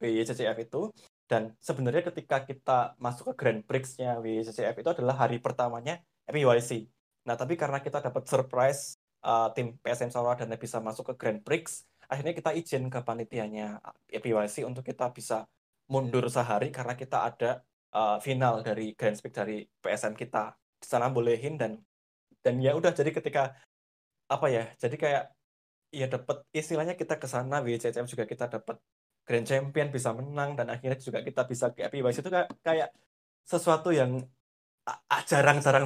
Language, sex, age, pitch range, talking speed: Indonesian, male, 20-39, 115-135 Hz, 155 wpm